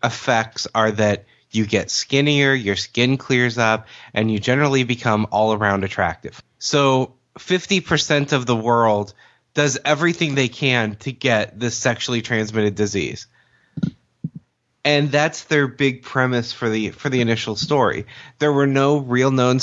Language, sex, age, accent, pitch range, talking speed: English, male, 20-39, American, 110-135 Hz, 145 wpm